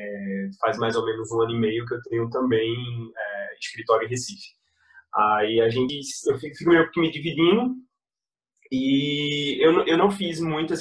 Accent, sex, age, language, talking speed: Brazilian, male, 20-39, Portuguese, 170 wpm